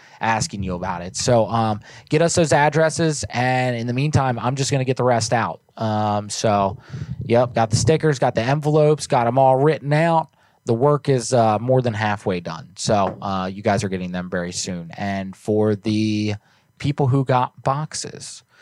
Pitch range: 105-145 Hz